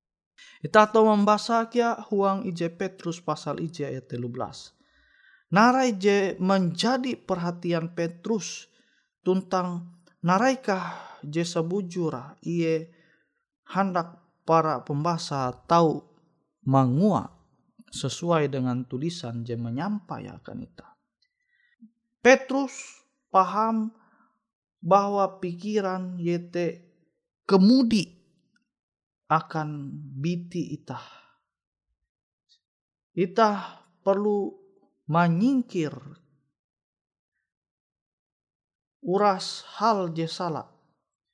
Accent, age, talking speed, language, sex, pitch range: native, 30-49, 60 wpm, Indonesian, male, 160-215 Hz